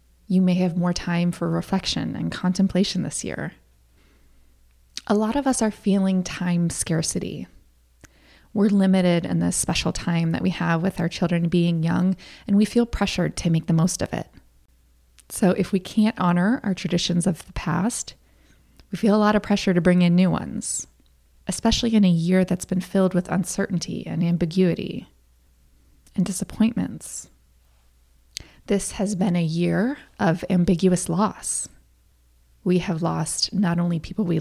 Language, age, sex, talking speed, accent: English, 20-39, female, 160 wpm, American